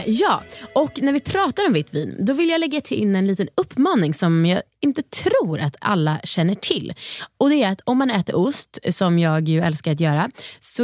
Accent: native